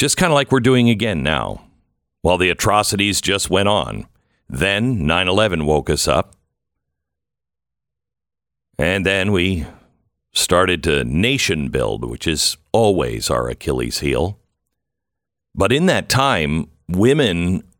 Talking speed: 125 wpm